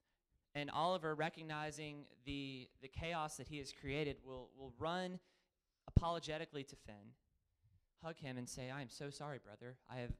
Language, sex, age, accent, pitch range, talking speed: English, male, 30-49, American, 110-160 Hz, 160 wpm